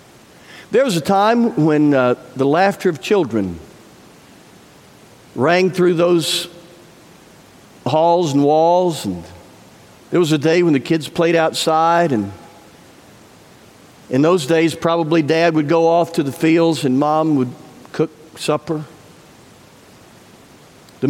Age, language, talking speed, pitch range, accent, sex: 50-69, English, 125 wpm, 135-170 Hz, American, male